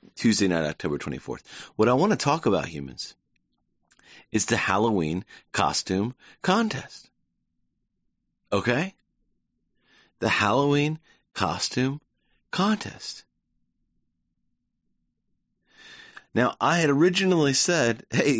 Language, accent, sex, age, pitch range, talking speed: English, American, male, 30-49, 100-160 Hz, 90 wpm